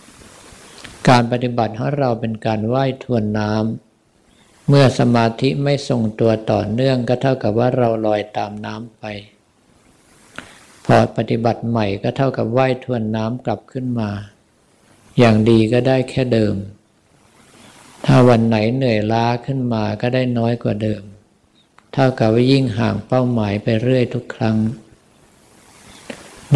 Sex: male